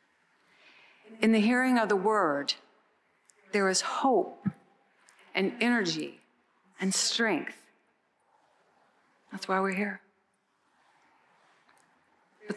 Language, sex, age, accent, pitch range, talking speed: English, female, 50-69, American, 190-245 Hz, 85 wpm